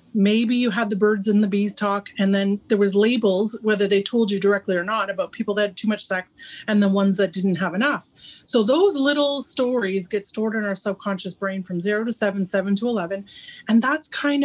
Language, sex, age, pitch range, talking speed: English, female, 30-49, 195-250 Hz, 230 wpm